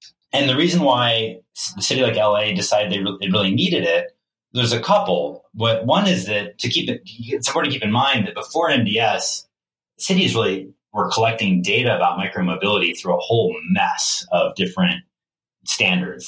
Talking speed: 175 wpm